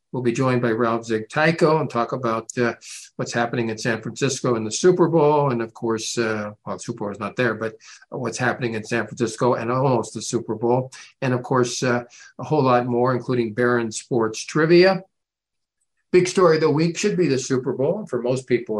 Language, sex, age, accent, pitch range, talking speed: English, male, 50-69, American, 110-130 Hz, 215 wpm